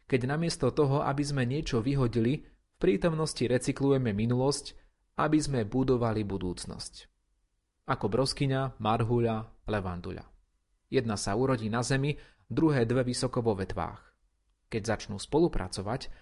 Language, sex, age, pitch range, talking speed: Slovak, male, 30-49, 100-135 Hz, 120 wpm